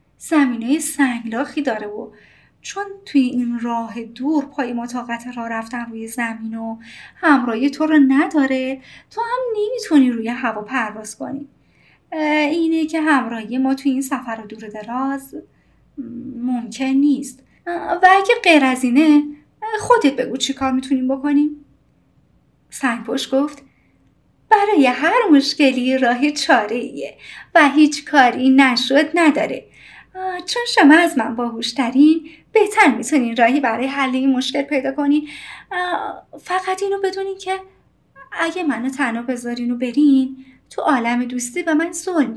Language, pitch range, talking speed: Persian, 250-310 Hz, 130 wpm